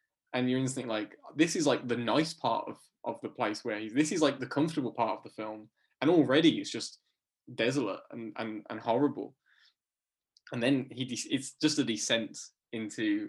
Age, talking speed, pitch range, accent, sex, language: 10-29, 200 wpm, 110-135 Hz, British, male, English